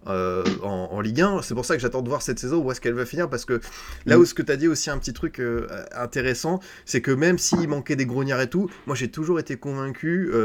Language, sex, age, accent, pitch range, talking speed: French, male, 20-39, French, 115-150 Hz, 280 wpm